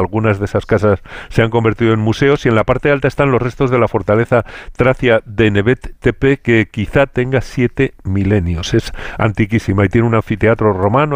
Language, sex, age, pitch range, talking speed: Spanish, male, 50-69, 105-125 Hz, 195 wpm